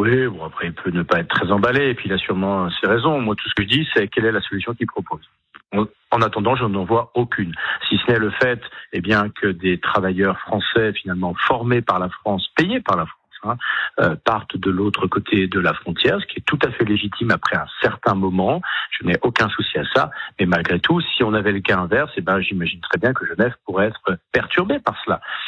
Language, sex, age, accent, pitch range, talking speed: French, male, 50-69, French, 100-130 Hz, 240 wpm